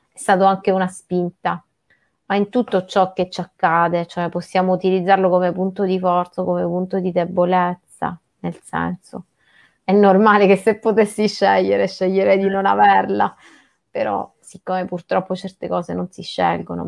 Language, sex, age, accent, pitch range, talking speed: Italian, female, 30-49, native, 170-190 Hz, 155 wpm